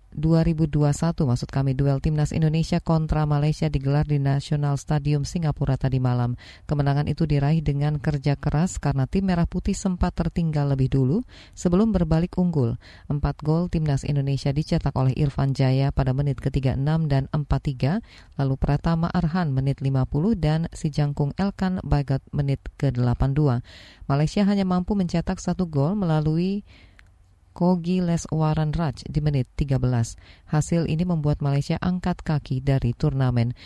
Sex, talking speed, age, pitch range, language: female, 140 wpm, 20-39, 135-170 Hz, Indonesian